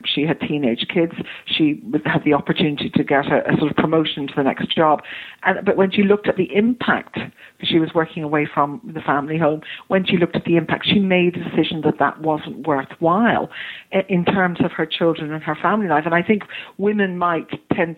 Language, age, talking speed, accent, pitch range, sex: English, 50-69, 215 wpm, British, 155-190 Hz, female